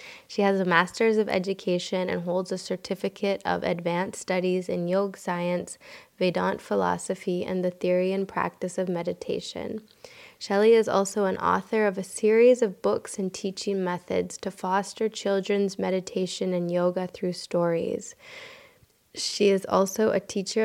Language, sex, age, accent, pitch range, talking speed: English, female, 20-39, American, 180-205 Hz, 150 wpm